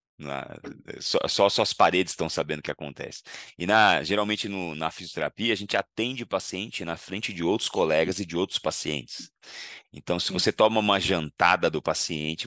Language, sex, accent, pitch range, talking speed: Portuguese, male, Brazilian, 80-95 Hz, 190 wpm